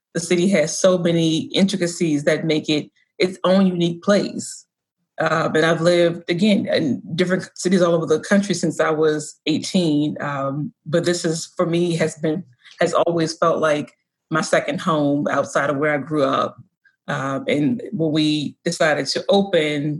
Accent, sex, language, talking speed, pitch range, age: American, female, English, 170 wpm, 150-180 Hz, 30-49